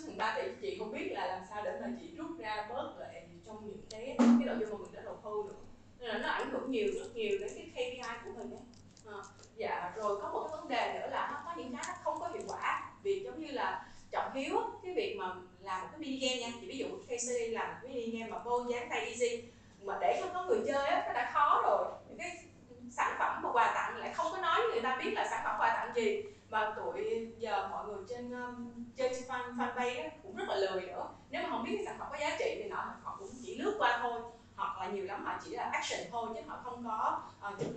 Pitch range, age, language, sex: 225-365 Hz, 20-39, Vietnamese, female